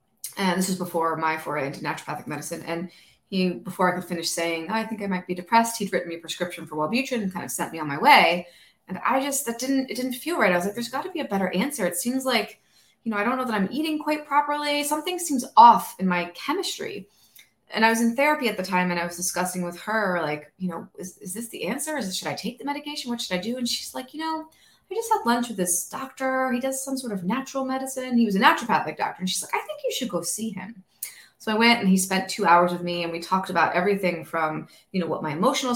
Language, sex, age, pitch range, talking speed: English, female, 20-39, 175-245 Hz, 275 wpm